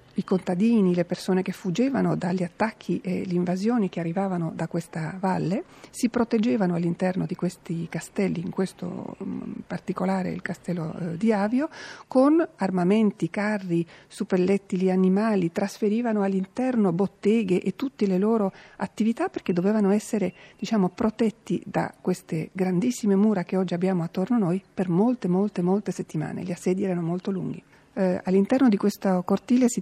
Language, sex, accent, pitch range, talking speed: Italian, female, native, 175-210 Hz, 145 wpm